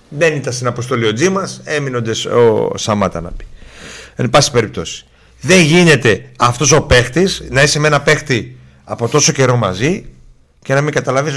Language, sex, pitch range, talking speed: Greek, male, 95-135 Hz, 165 wpm